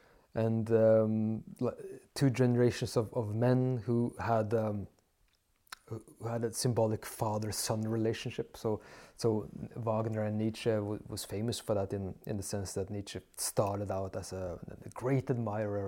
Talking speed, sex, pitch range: 145 wpm, male, 105-125 Hz